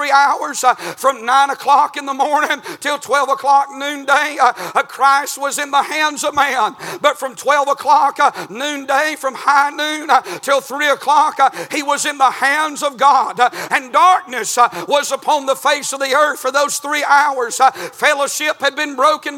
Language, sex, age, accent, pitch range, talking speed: English, male, 50-69, American, 265-300 Hz, 185 wpm